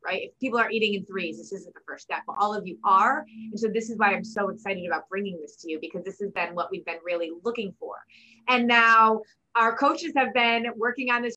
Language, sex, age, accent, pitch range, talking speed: English, female, 20-39, American, 195-245 Hz, 260 wpm